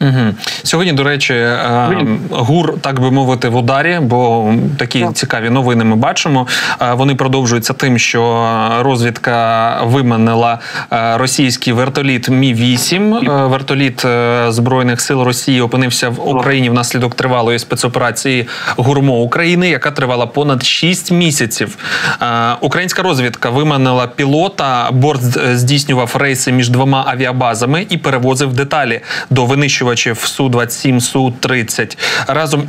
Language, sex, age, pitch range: Ukrainian, male, 20-39, 125-145 Hz